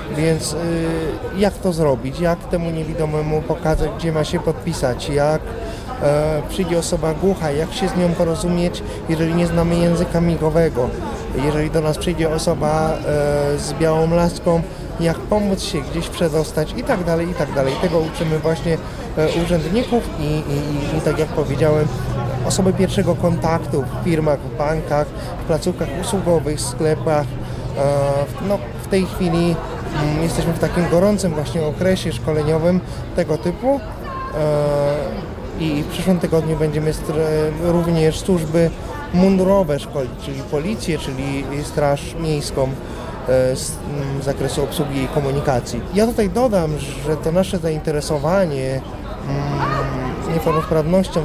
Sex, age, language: male, 30-49, Polish